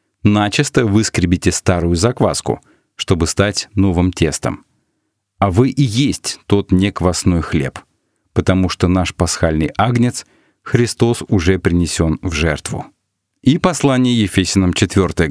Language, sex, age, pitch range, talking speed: Russian, male, 40-59, 90-115 Hz, 115 wpm